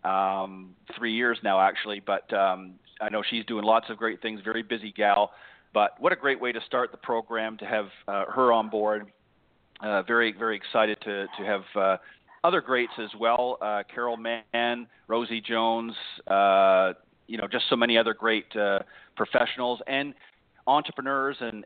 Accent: American